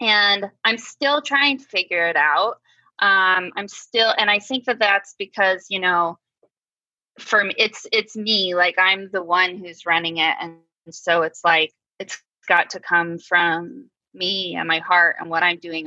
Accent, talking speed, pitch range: American, 180 wpm, 165-205 Hz